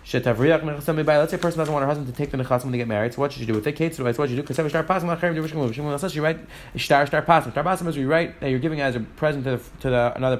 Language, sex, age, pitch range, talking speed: English, male, 30-49, 145-175 Hz, 270 wpm